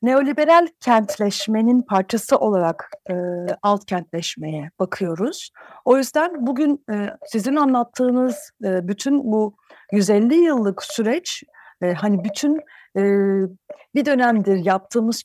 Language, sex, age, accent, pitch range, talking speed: Turkish, female, 60-79, native, 195-265 Hz, 105 wpm